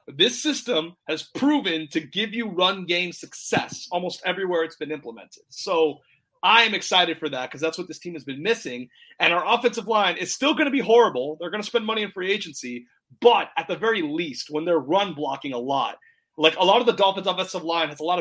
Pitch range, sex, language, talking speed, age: 155-195 Hz, male, English, 225 wpm, 30-49